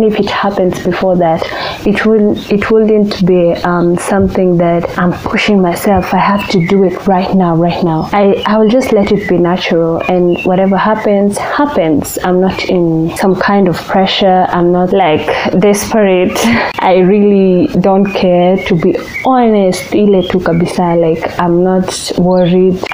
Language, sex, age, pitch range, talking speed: English, female, 20-39, 175-200 Hz, 155 wpm